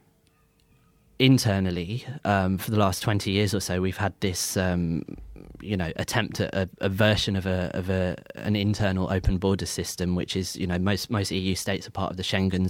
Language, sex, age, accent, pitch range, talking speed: English, male, 20-39, British, 95-110 Hz, 200 wpm